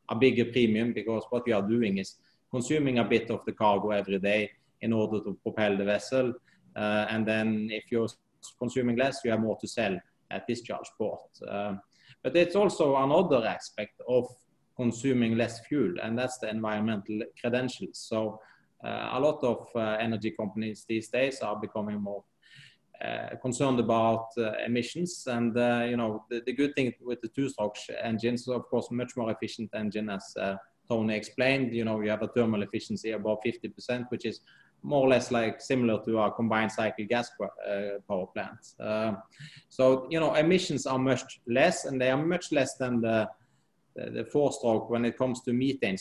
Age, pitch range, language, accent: 30-49, 110-125 Hz, English, Norwegian